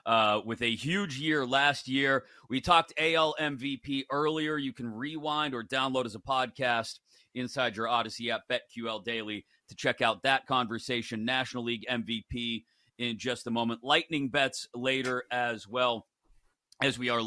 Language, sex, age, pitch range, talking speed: English, male, 40-59, 115-145 Hz, 160 wpm